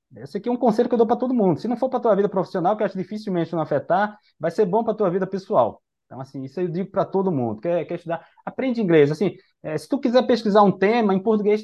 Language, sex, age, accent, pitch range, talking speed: Portuguese, male, 20-39, Brazilian, 135-205 Hz, 290 wpm